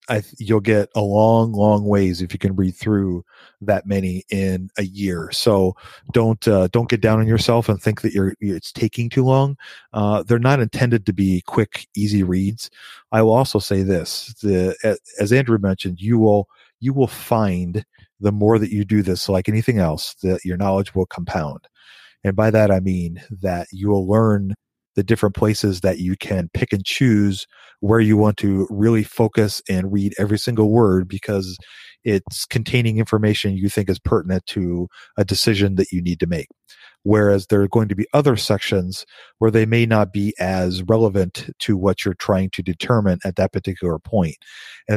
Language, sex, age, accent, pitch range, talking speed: English, male, 40-59, American, 95-110 Hz, 185 wpm